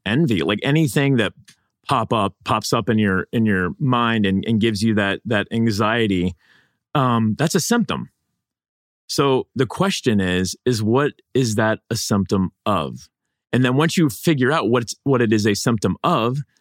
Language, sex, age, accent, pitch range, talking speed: English, male, 30-49, American, 105-140 Hz, 175 wpm